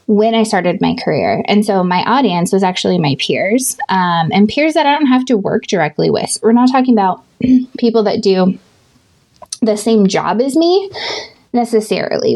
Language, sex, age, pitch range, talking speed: English, female, 20-39, 190-235 Hz, 180 wpm